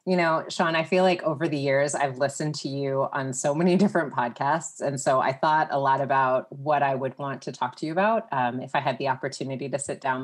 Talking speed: 250 wpm